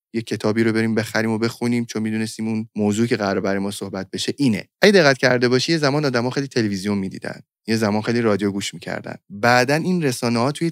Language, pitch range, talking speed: Persian, 105-130 Hz, 225 wpm